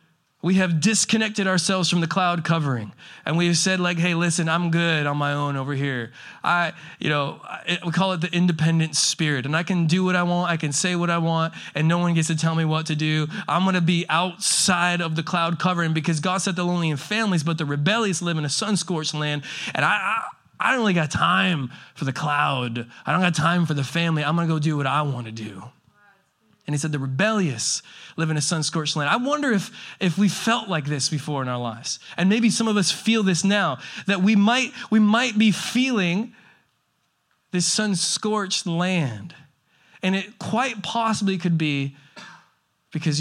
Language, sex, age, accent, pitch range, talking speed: English, male, 20-39, American, 150-190 Hz, 220 wpm